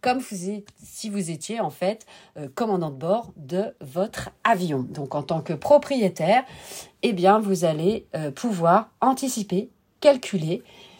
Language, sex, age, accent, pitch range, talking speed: French, female, 40-59, French, 180-225 Hz, 155 wpm